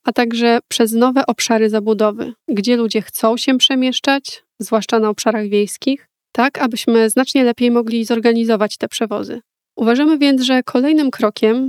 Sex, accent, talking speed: female, native, 145 wpm